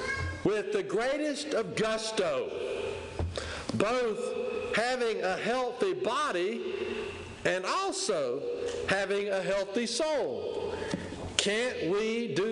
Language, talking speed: English, 90 wpm